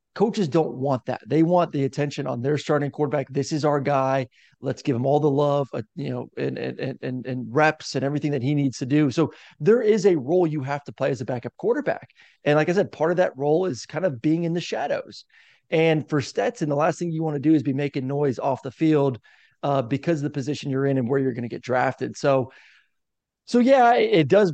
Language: English